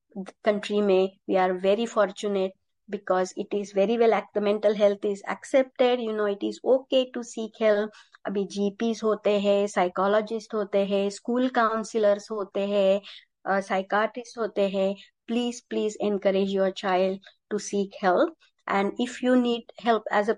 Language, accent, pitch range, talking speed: Hindi, native, 195-235 Hz, 160 wpm